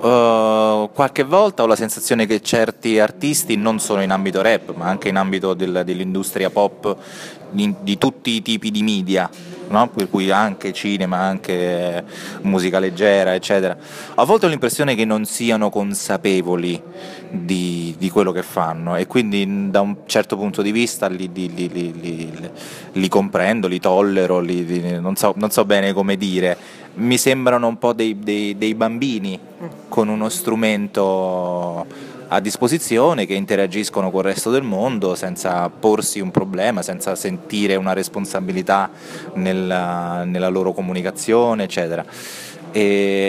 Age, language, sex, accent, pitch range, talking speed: 20-39, Italian, male, native, 95-115 Hz, 150 wpm